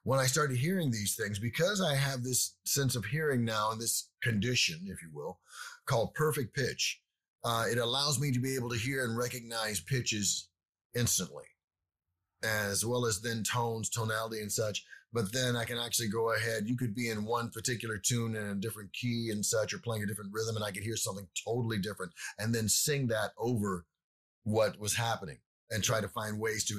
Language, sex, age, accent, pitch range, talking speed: English, male, 30-49, American, 110-135 Hz, 200 wpm